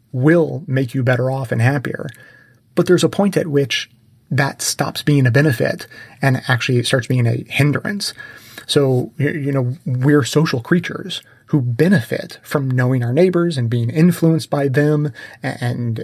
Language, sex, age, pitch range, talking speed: English, male, 30-49, 120-145 Hz, 155 wpm